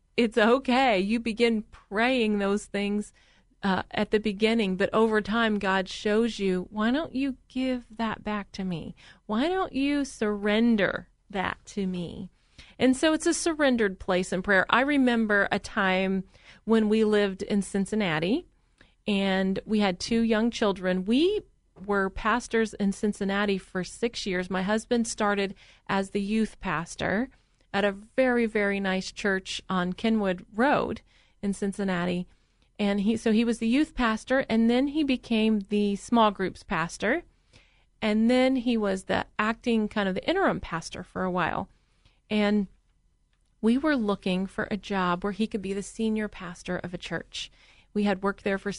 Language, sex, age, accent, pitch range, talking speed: English, female, 40-59, American, 195-230 Hz, 165 wpm